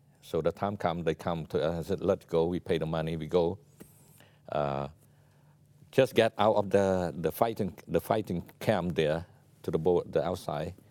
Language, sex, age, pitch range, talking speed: English, male, 60-79, 95-135 Hz, 195 wpm